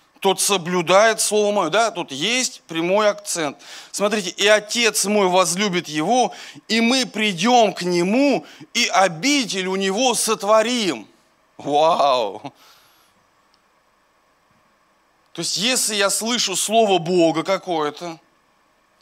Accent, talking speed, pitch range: native, 105 wpm, 195-245 Hz